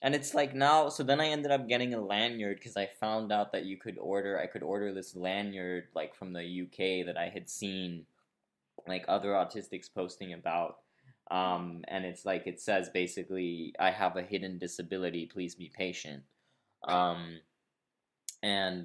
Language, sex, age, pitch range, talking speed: English, male, 20-39, 90-120 Hz, 175 wpm